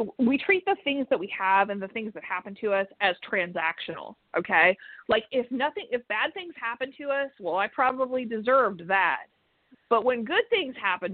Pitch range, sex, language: 190-260 Hz, female, English